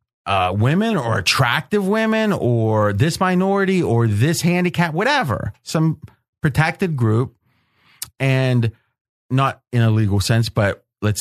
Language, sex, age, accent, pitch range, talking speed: English, male, 30-49, American, 115-155 Hz, 125 wpm